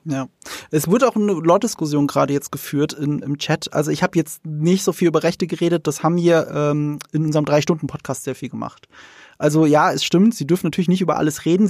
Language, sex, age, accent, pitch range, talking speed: German, male, 20-39, German, 145-185 Hz, 225 wpm